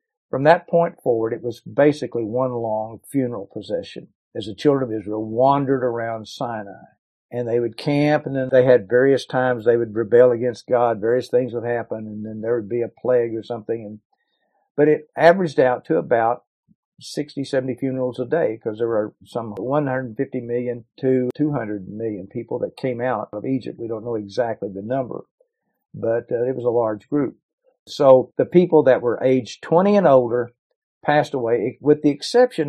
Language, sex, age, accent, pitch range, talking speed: English, male, 50-69, American, 115-145 Hz, 180 wpm